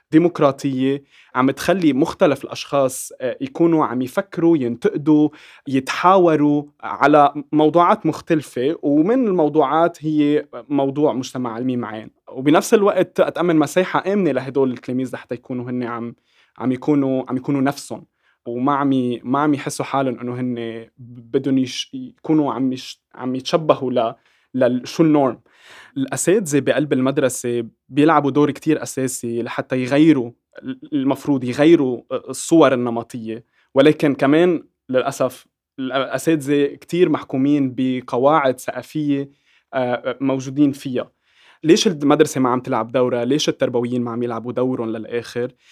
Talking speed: 115 wpm